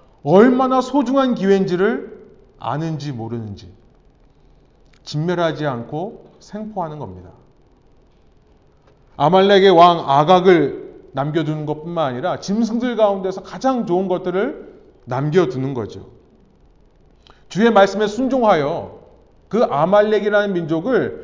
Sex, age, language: male, 30-49, Korean